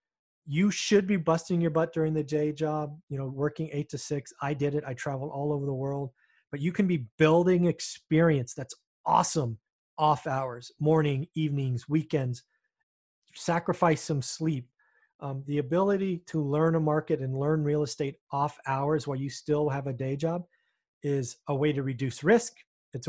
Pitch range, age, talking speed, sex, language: 140-165 Hz, 30-49, 175 wpm, male, English